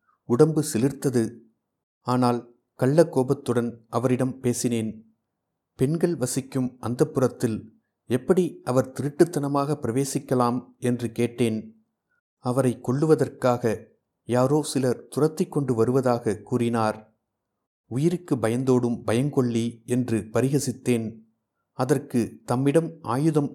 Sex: male